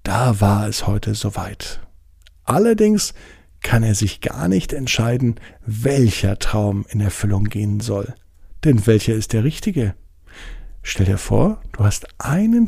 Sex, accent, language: male, German, German